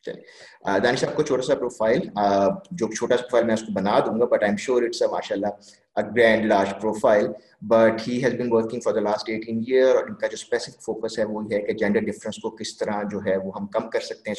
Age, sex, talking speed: 30-49, male, 60 wpm